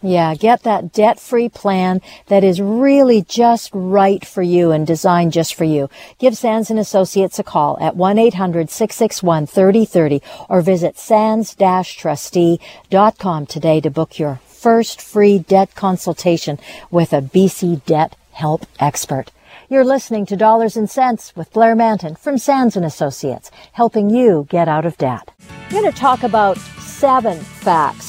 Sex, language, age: female, English, 50-69